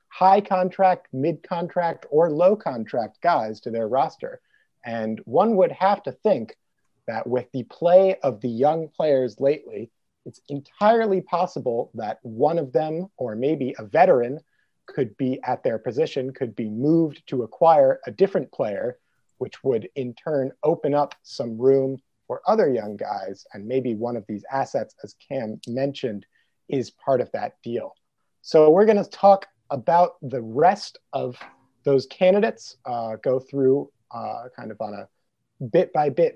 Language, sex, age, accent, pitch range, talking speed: English, male, 30-49, American, 130-180 Hz, 160 wpm